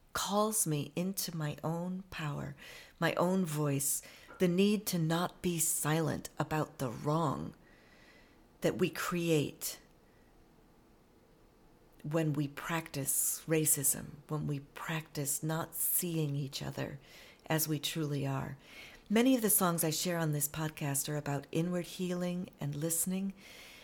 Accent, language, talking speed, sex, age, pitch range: American, English, 130 wpm, female, 40-59, 150-190 Hz